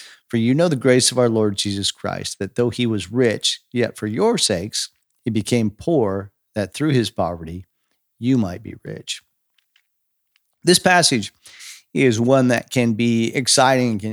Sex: male